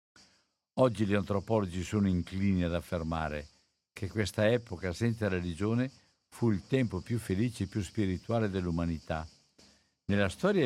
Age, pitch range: 60-79, 90-120 Hz